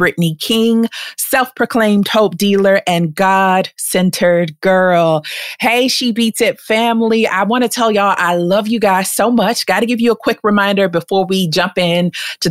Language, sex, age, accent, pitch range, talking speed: English, female, 30-49, American, 175-225 Hz, 175 wpm